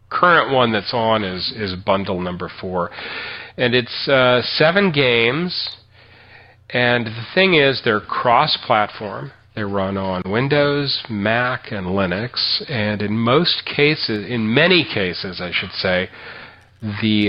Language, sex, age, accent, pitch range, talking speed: English, male, 40-59, American, 95-115 Hz, 130 wpm